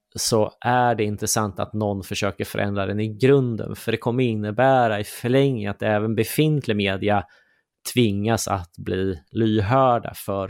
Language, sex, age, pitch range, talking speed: Swedish, male, 30-49, 95-110 Hz, 150 wpm